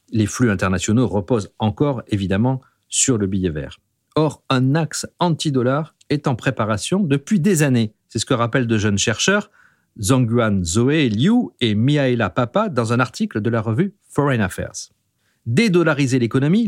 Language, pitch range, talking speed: French, 110-155 Hz, 155 wpm